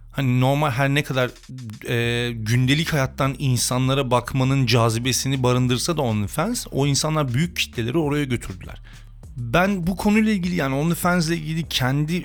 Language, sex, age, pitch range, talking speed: Turkish, male, 40-59, 110-140 Hz, 135 wpm